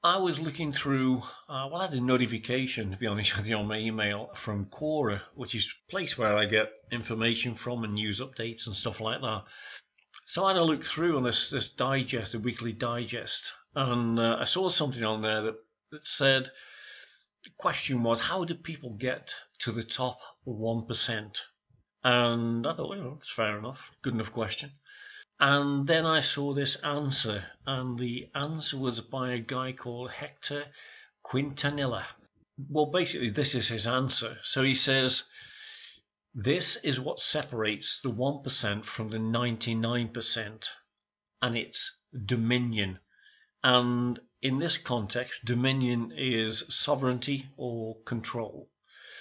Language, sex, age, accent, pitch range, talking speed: English, male, 50-69, British, 115-140 Hz, 155 wpm